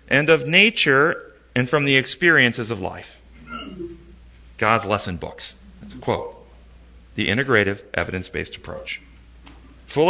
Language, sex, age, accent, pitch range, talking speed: English, male, 40-59, American, 115-175 Hz, 120 wpm